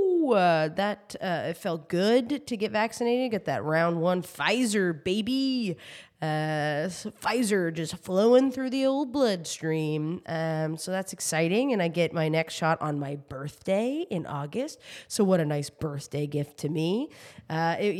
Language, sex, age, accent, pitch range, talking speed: English, female, 20-39, American, 155-200 Hz, 155 wpm